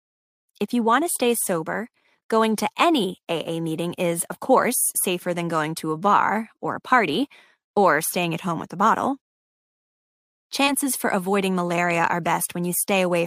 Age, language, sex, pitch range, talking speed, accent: 20-39, English, female, 175-230 Hz, 180 wpm, American